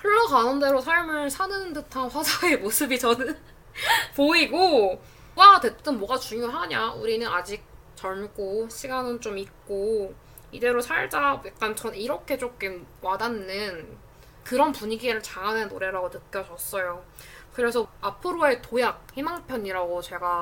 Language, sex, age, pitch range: Korean, female, 20-39, 190-275 Hz